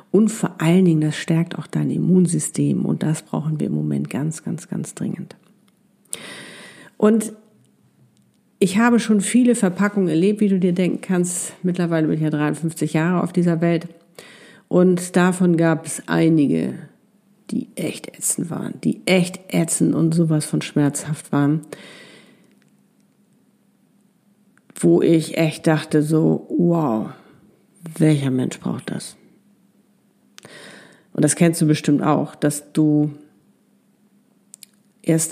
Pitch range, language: 155-190 Hz, German